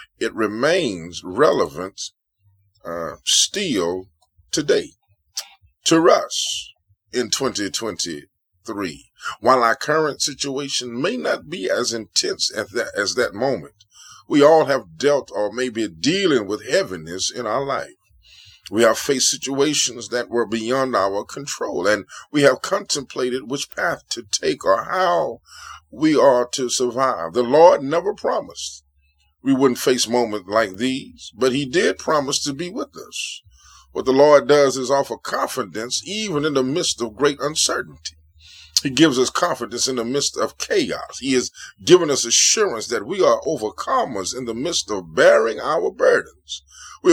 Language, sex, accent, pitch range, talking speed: English, male, American, 105-145 Hz, 150 wpm